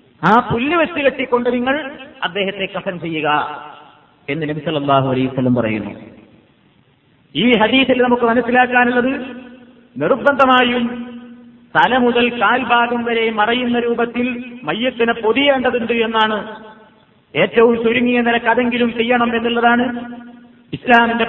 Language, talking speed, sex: Malayalam, 85 wpm, male